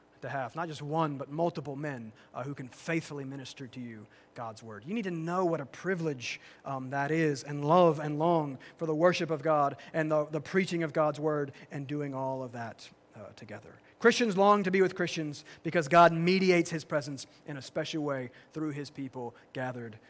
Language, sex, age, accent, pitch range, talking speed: English, male, 30-49, American, 135-175 Hz, 205 wpm